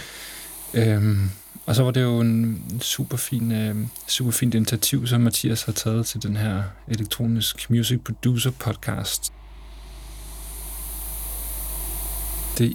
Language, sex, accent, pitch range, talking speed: Danish, male, native, 105-125 Hz, 110 wpm